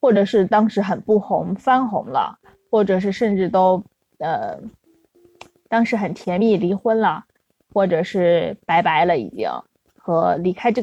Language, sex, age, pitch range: Chinese, female, 20-39, 195-255 Hz